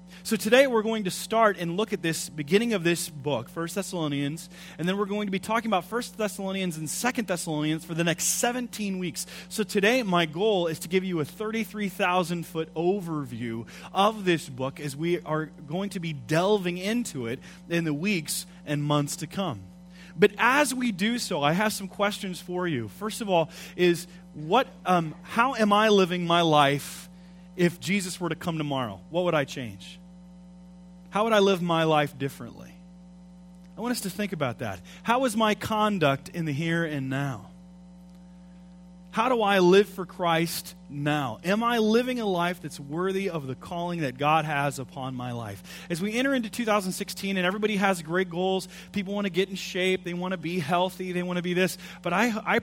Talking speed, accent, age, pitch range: 195 wpm, American, 30-49, 165-195 Hz